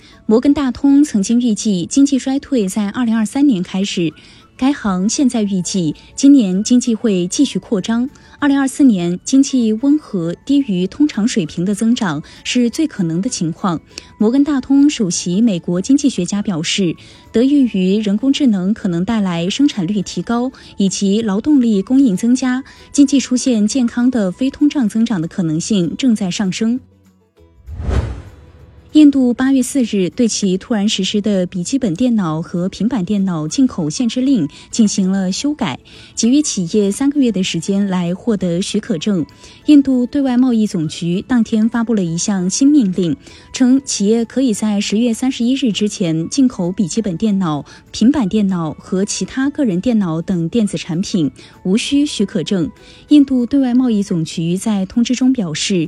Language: Chinese